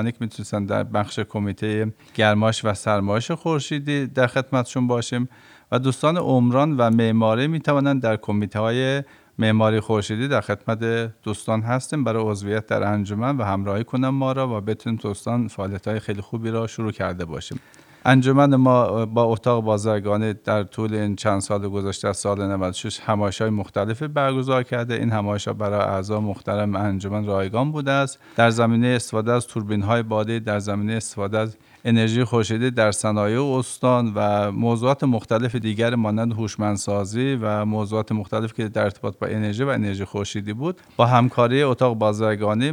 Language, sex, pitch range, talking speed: Persian, male, 105-125 Hz, 160 wpm